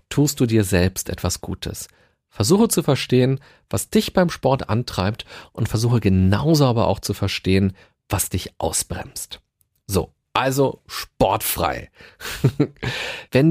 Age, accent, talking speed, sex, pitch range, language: 40-59, German, 125 wpm, male, 105-150 Hz, German